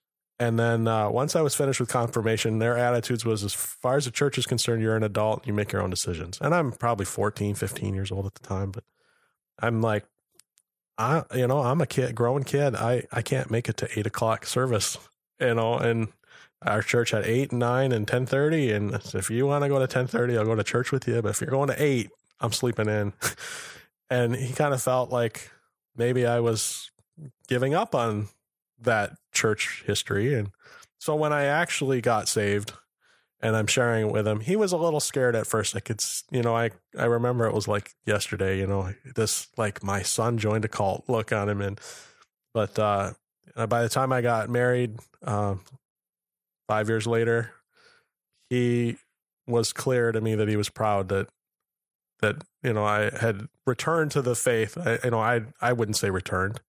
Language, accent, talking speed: English, American, 205 wpm